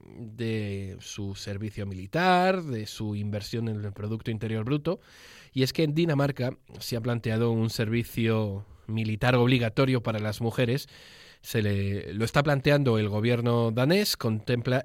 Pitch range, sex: 110-130 Hz, male